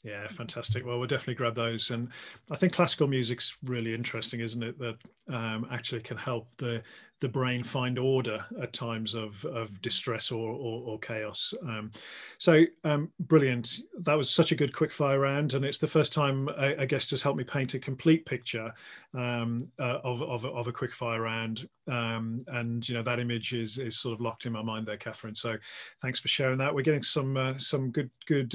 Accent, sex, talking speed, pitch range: British, male, 210 wpm, 120-145 Hz